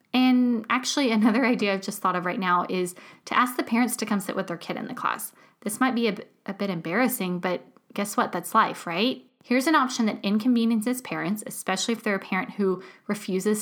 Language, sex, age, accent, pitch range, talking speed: English, female, 10-29, American, 195-245 Hz, 220 wpm